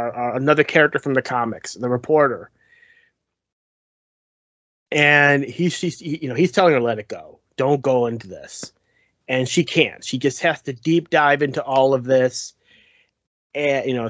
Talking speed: 155 wpm